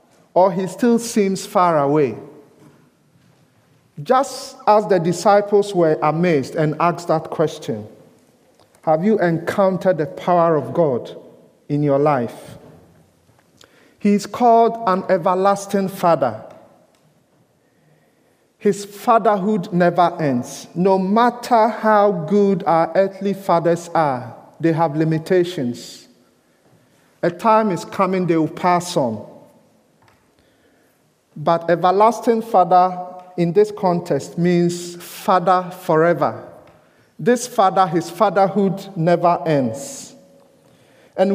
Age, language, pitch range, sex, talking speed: 50-69, English, 165-205 Hz, male, 105 wpm